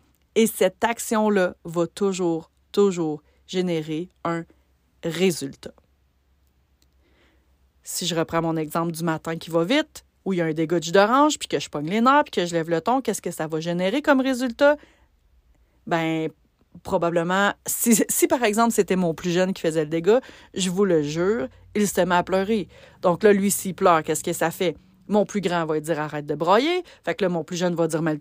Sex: female